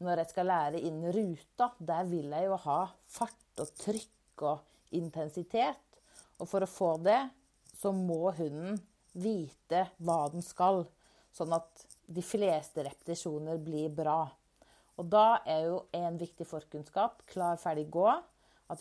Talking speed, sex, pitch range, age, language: 140 wpm, female, 155-195 Hz, 40-59, Swedish